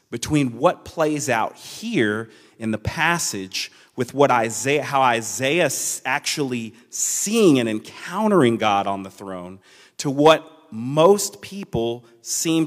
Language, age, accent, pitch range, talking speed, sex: English, 30-49, American, 110-130 Hz, 125 wpm, male